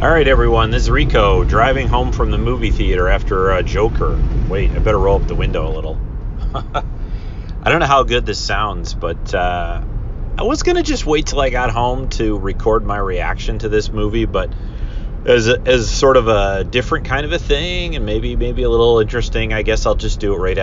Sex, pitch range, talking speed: male, 95-125 Hz, 215 wpm